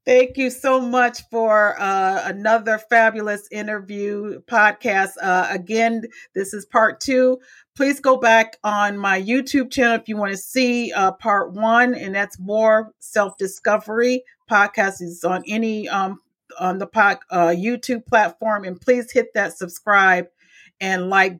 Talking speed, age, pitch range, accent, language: 140 wpm, 40-59, 190-230 Hz, American, English